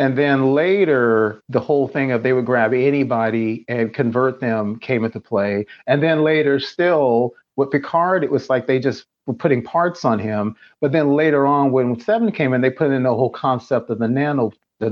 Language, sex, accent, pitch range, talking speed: English, male, American, 120-150 Hz, 205 wpm